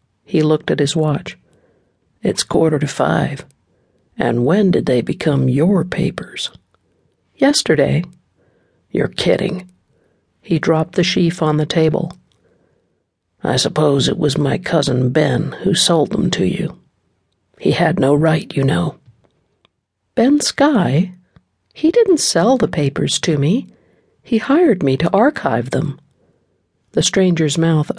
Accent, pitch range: American, 145-185 Hz